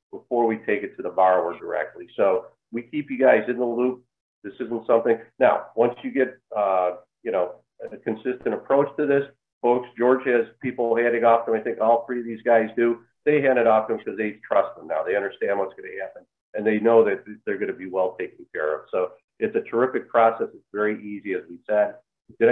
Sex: male